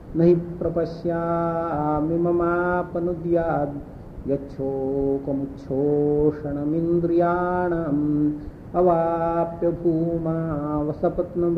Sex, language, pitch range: male, English, 145-170 Hz